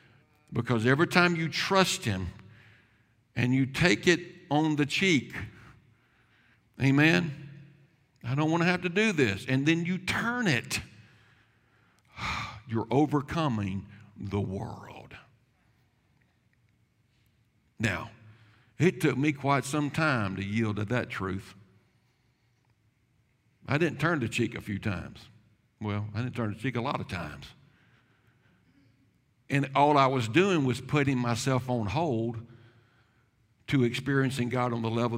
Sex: male